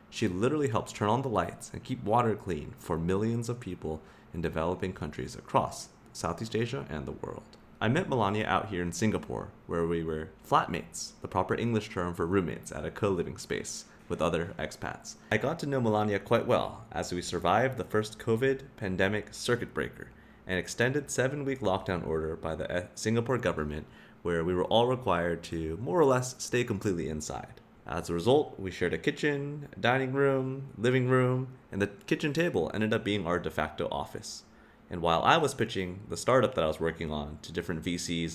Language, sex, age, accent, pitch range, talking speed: English, male, 30-49, American, 85-115 Hz, 190 wpm